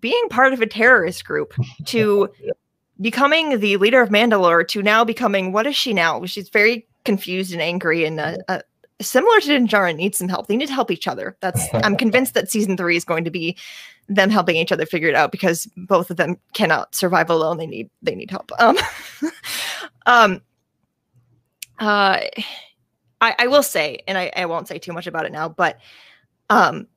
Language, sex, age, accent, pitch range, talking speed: English, female, 20-39, American, 175-230 Hz, 195 wpm